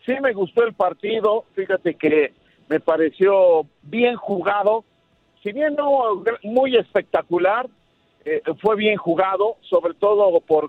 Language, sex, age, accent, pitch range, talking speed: Spanish, male, 50-69, Mexican, 170-230 Hz, 130 wpm